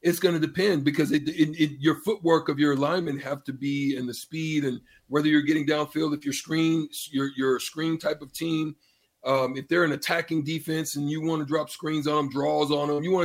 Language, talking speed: English, 240 wpm